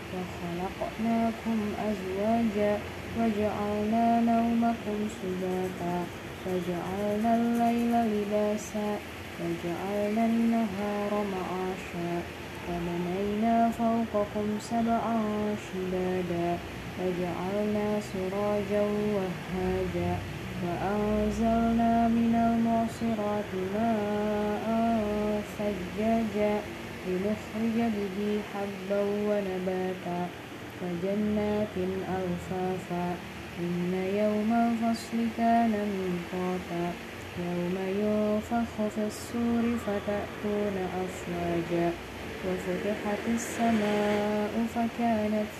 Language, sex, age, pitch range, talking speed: Indonesian, female, 20-39, 185-215 Hz, 60 wpm